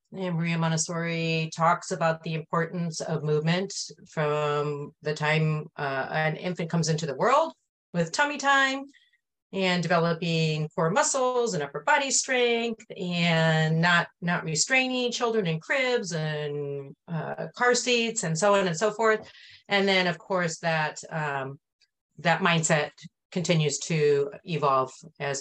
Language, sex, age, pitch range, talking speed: English, female, 30-49, 150-195 Hz, 140 wpm